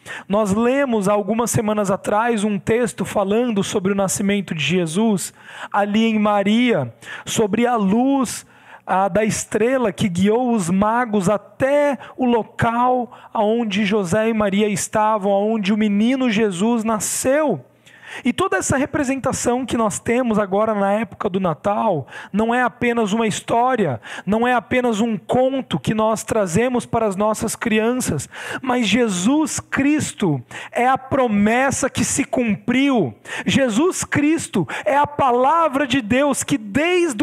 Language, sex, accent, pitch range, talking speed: Portuguese, male, Brazilian, 210-255 Hz, 135 wpm